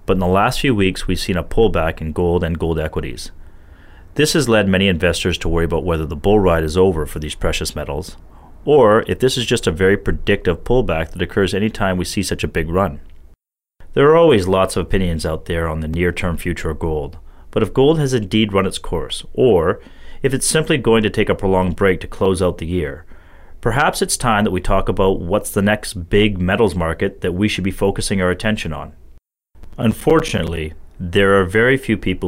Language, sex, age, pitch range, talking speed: English, male, 30-49, 80-105 Hz, 215 wpm